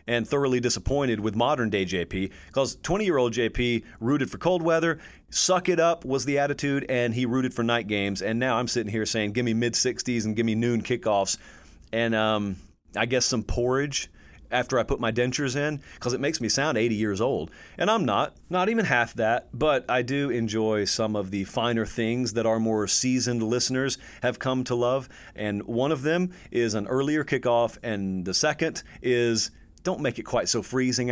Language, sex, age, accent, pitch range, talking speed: English, male, 30-49, American, 110-130 Hz, 195 wpm